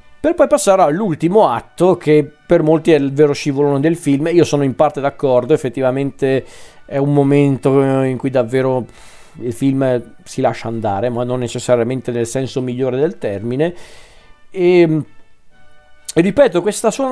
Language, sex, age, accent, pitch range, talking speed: Italian, male, 40-59, native, 130-155 Hz, 155 wpm